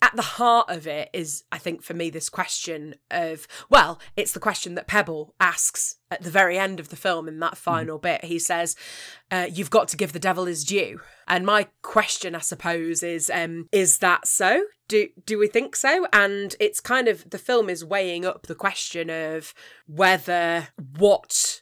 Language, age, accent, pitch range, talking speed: English, 20-39, British, 165-205 Hz, 195 wpm